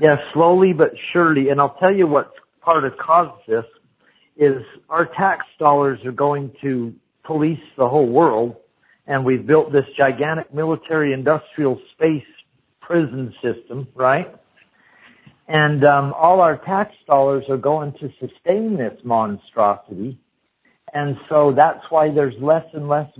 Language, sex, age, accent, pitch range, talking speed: English, male, 60-79, American, 135-160 Hz, 150 wpm